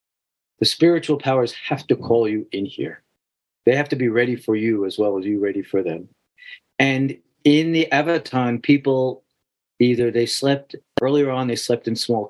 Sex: male